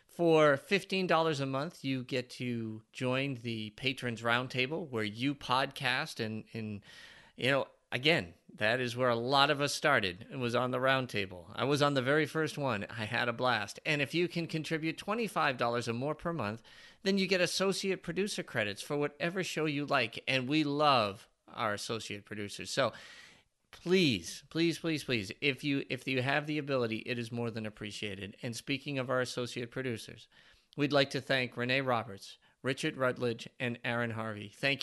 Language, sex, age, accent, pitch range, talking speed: English, male, 40-59, American, 120-150 Hz, 180 wpm